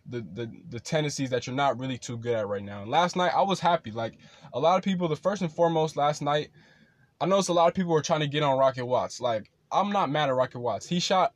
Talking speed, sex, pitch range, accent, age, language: 275 wpm, male, 130-160 Hz, American, 10-29, English